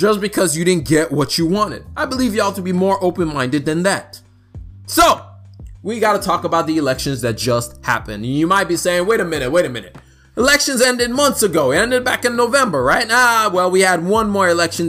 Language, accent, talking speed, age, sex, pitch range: English, American, 220 wpm, 20-39, male, 135-185 Hz